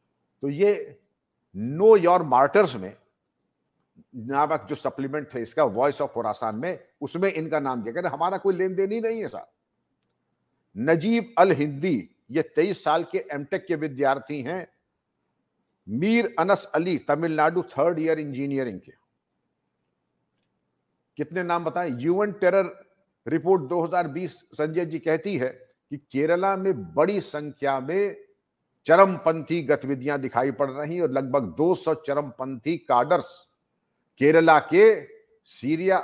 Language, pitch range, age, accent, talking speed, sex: English, 140-180 Hz, 50-69, Indian, 125 wpm, male